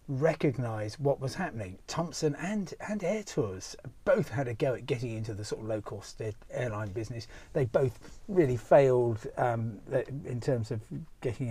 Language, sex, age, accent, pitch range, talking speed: English, male, 40-59, British, 120-175 Hz, 165 wpm